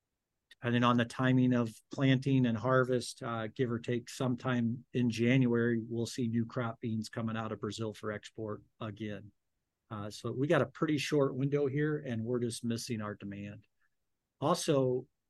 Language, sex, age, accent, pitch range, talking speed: English, male, 50-69, American, 115-135 Hz, 175 wpm